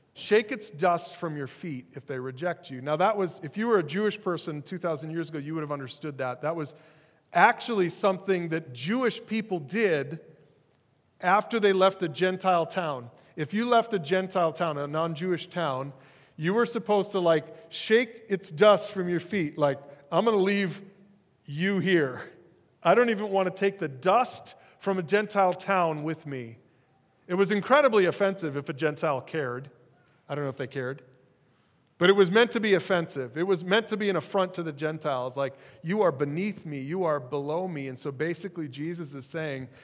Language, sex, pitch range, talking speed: English, male, 145-195 Hz, 190 wpm